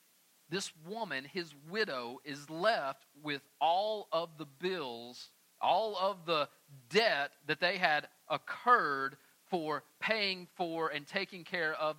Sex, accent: male, American